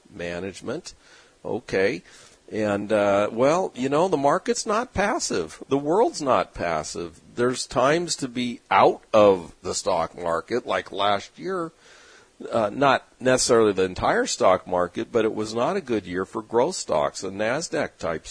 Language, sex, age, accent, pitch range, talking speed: English, male, 50-69, American, 95-130 Hz, 155 wpm